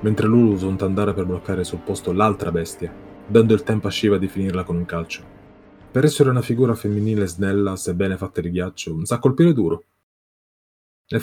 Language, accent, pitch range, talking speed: Italian, native, 95-130 Hz, 185 wpm